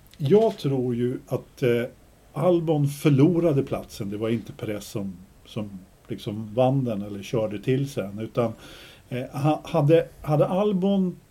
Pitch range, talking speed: 115-170 Hz, 140 wpm